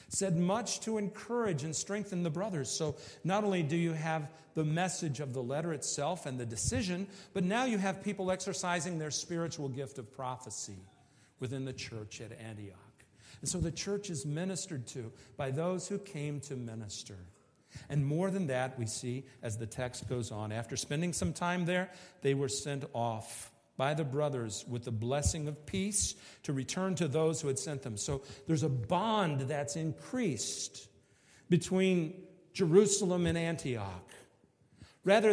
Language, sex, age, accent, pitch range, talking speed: English, male, 50-69, American, 125-175 Hz, 170 wpm